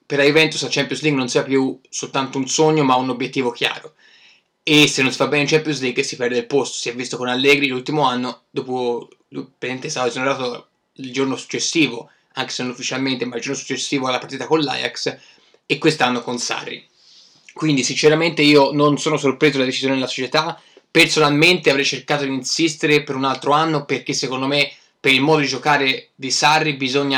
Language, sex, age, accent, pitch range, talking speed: Italian, male, 20-39, native, 130-150 Hz, 195 wpm